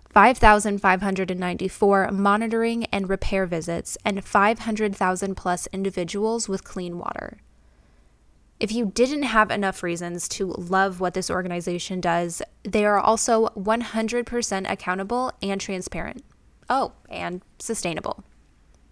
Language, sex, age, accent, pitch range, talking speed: English, female, 10-29, American, 185-220 Hz, 110 wpm